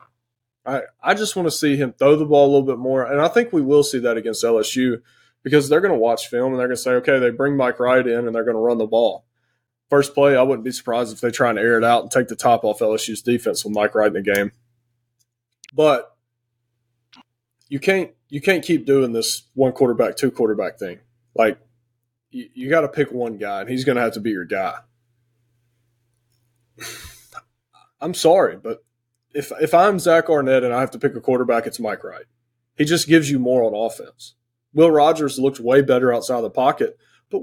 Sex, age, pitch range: male, 20-39, 120-145 Hz